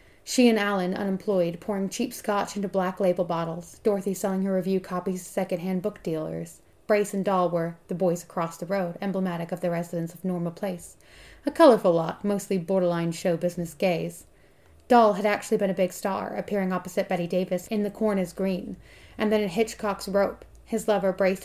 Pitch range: 175-205 Hz